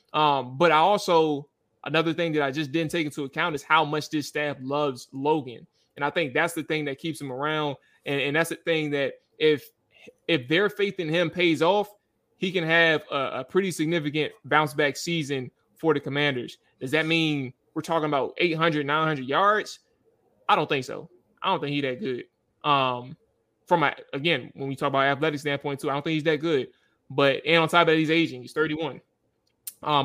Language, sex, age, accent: English, male, 20-39, American